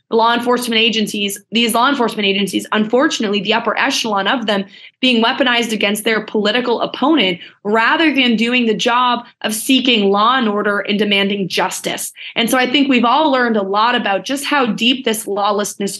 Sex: female